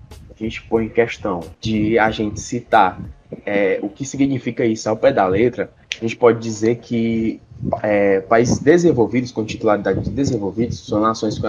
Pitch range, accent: 105-135 Hz, Brazilian